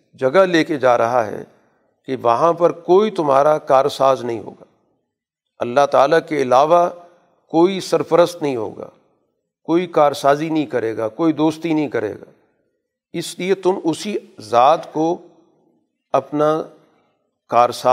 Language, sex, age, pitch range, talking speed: Urdu, male, 50-69, 135-165 Hz, 140 wpm